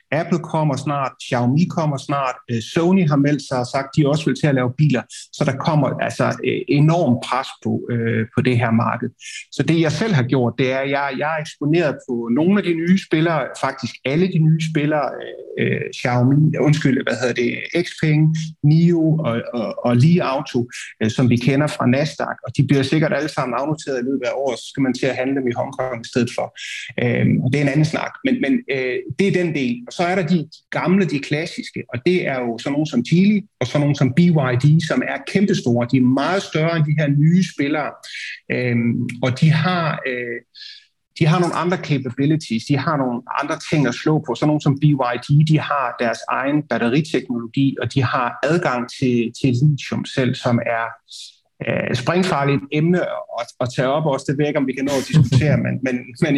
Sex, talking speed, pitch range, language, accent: male, 210 wpm, 130-165 Hz, Danish, native